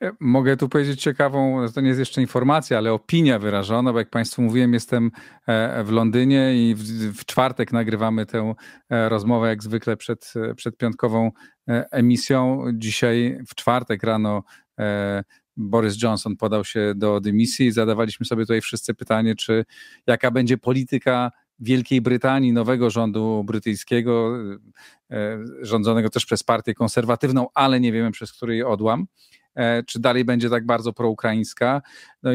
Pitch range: 110-125 Hz